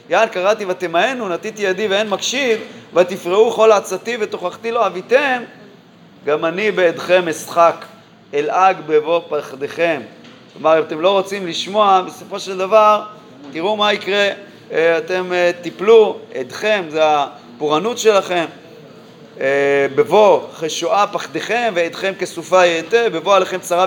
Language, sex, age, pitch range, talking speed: Hebrew, male, 30-49, 170-215 Hz, 120 wpm